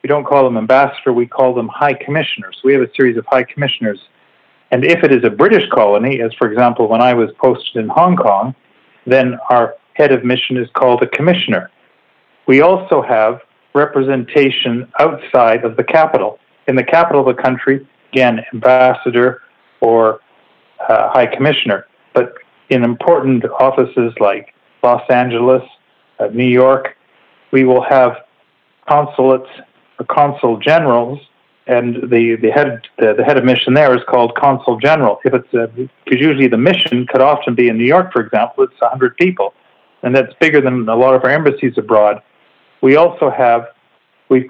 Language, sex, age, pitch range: English, male, 40-59, 120-135 Hz